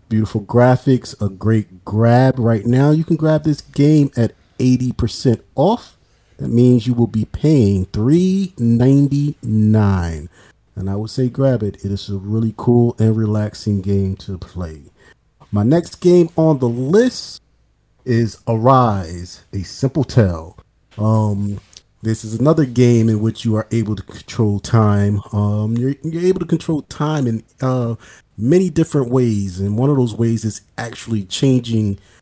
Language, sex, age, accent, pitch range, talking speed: English, male, 40-59, American, 100-135 Hz, 155 wpm